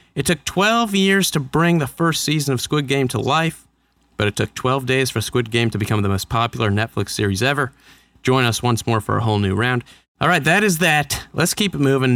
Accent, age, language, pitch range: American, 30-49, English, 110-145 Hz